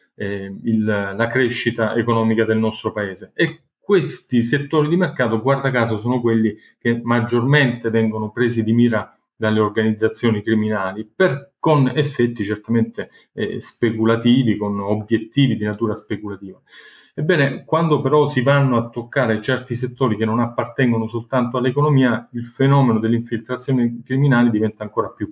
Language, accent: Italian, native